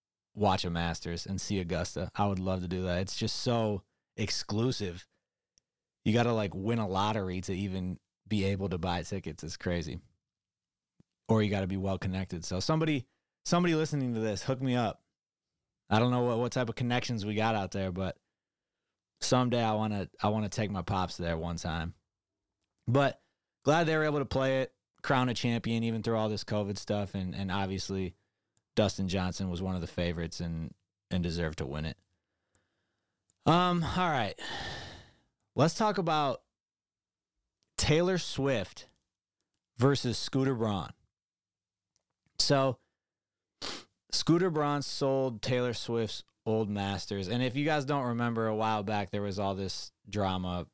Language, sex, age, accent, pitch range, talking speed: English, male, 20-39, American, 95-120 Hz, 160 wpm